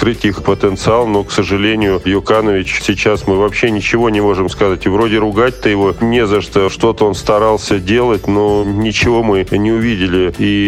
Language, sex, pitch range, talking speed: Russian, male, 95-105 Hz, 175 wpm